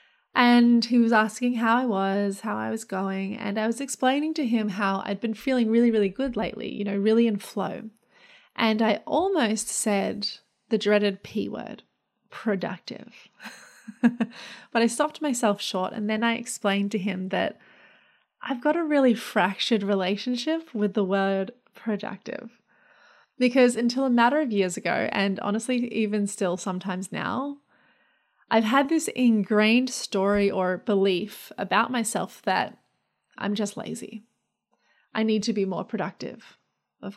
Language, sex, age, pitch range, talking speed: English, female, 20-39, 200-240 Hz, 150 wpm